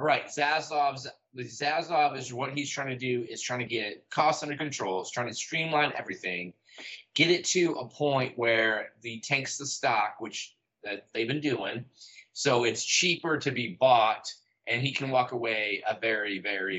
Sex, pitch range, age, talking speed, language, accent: male, 110-135 Hz, 20-39, 180 wpm, English, American